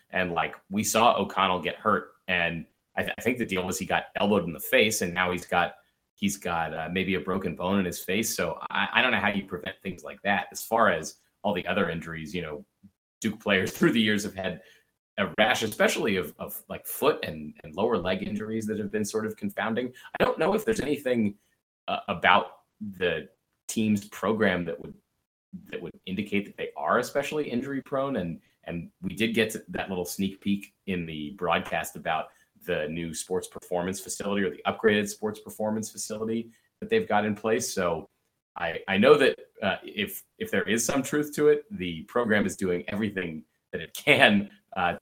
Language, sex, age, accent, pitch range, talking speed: English, male, 30-49, American, 90-125 Hz, 205 wpm